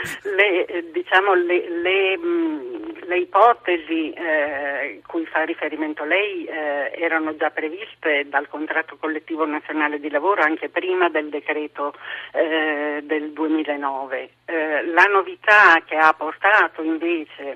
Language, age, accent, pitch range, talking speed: Italian, 40-59, native, 155-215 Hz, 120 wpm